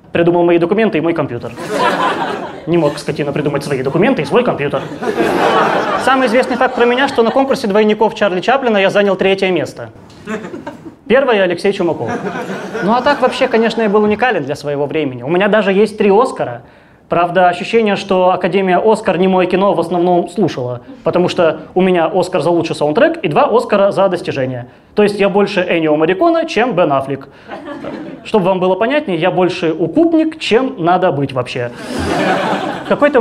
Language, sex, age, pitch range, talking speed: Russian, male, 20-39, 165-220 Hz, 170 wpm